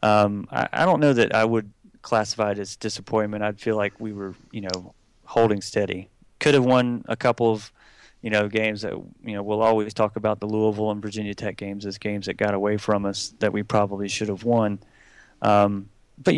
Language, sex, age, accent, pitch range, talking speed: English, male, 30-49, American, 100-115 Hz, 215 wpm